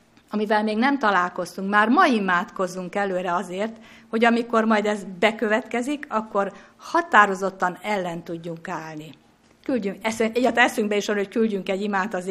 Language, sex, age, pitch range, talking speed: Hungarian, female, 50-69, 185-230 Hz, 140 wpm